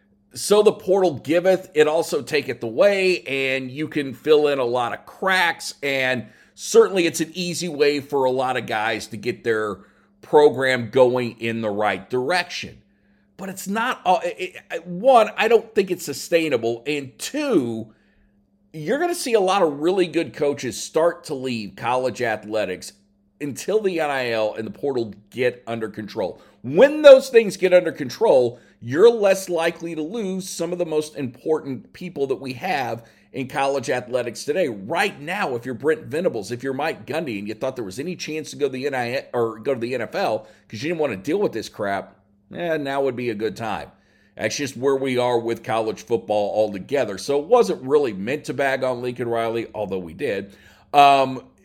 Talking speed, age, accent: 185 wpm, 50-69, American